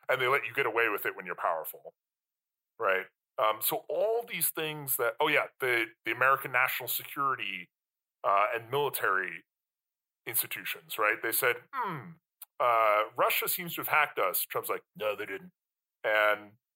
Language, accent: English, American